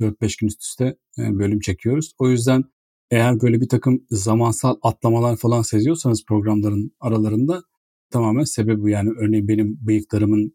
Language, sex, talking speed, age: Turkish, male, 135 wpm, 40-59